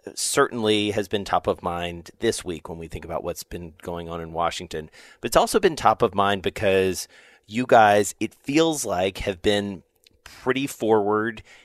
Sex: male